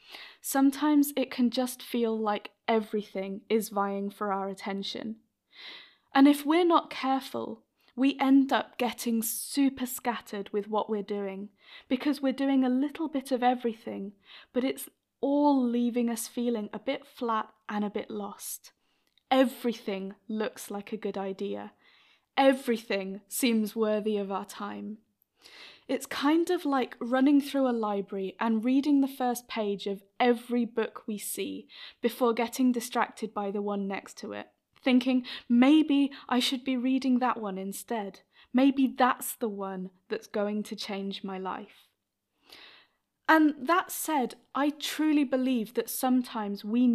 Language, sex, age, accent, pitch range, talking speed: English, female, 10-29, British, 205-265 Hz, 145 wpm